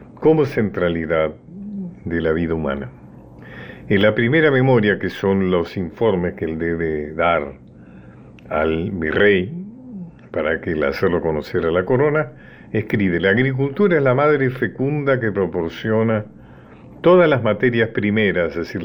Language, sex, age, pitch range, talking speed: Spanish, male, 50-69, 80-125 Hz, 135 wpm